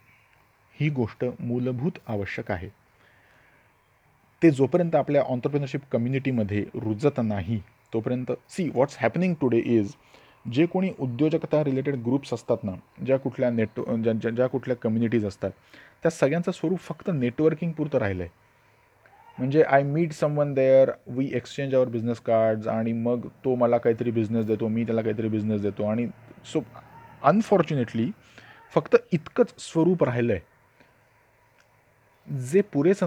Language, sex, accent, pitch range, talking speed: Marathi, male, native, 115-150 Hz, 130 wpm